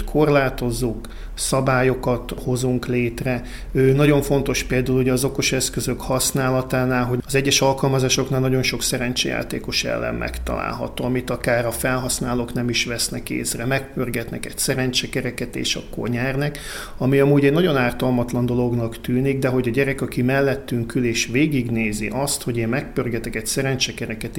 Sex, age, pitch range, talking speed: male, 50-69, 120-130 Hz, 140 wpm